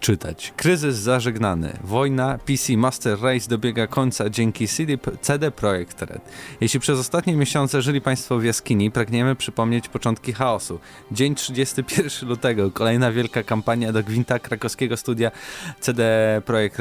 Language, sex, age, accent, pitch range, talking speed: Polish, male, 20-39, native, 110-130 Hz, 130 wpm